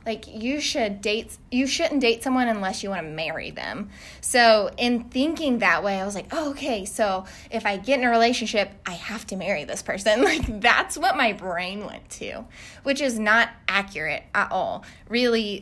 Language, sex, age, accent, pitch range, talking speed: English, female, 20-39, American, 195-240 Hz, 195 wpm